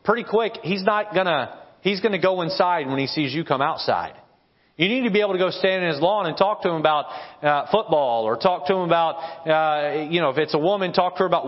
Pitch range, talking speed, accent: 140-200 Hz, 255 wpm, American